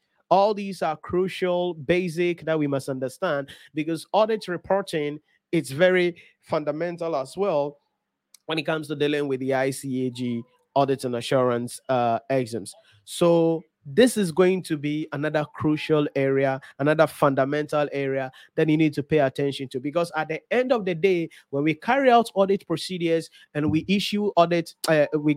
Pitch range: 145-180 Hz